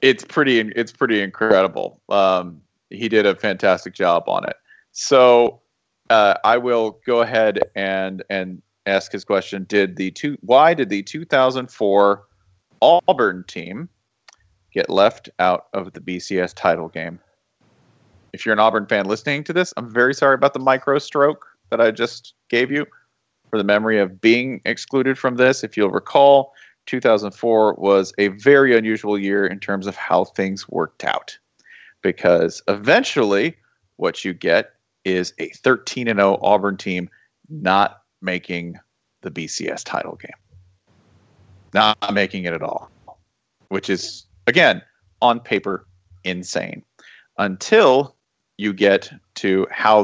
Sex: male